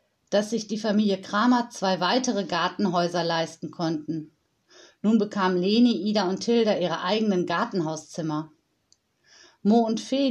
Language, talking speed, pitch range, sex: German, 130 wpm, 175-235 Hz, female